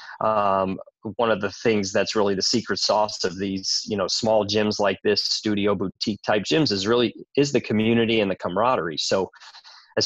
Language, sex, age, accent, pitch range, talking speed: English, male, 30-49, American, 100-120 Hz, 190 wpm